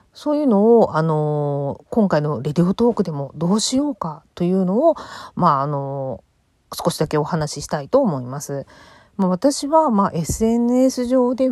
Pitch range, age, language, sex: 160-230 Hz, 40-59, Japanese, female